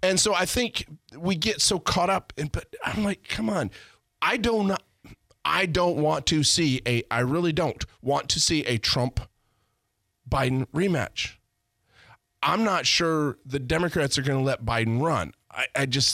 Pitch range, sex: 115-155 Hz, male